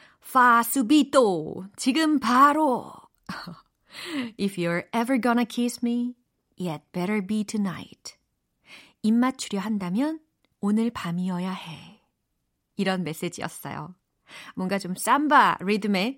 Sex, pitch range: female, 185-260 Hz